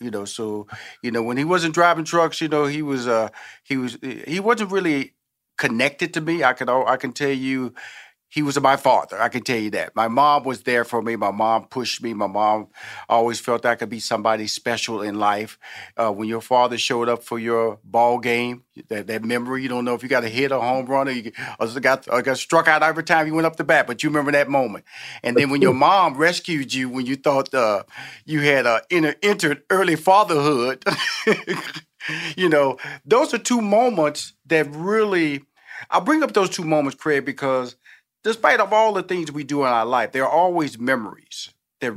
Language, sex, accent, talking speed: English, male, American, 220 wpm